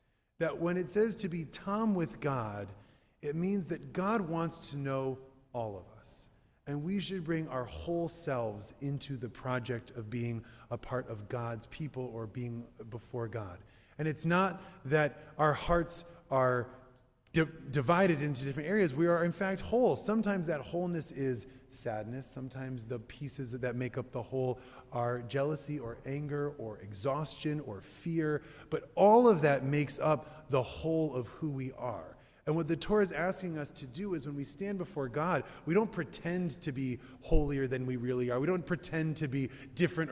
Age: 20-39